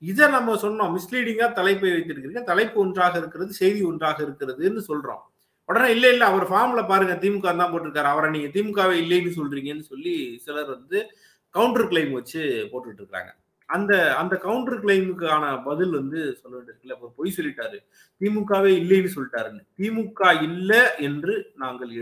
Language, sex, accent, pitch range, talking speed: Tamil, male, native, 150-205 Hz, 65 wpm